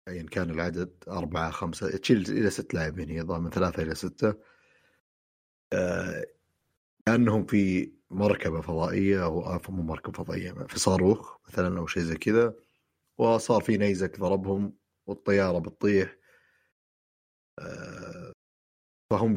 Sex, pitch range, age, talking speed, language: male, 90-115 Hz, 30-49, 125 wpm, Arabic